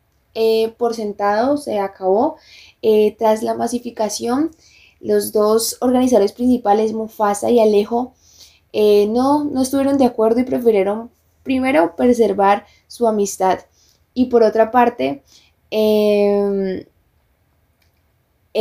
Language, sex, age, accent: Spanish, female, 10-29, Colombian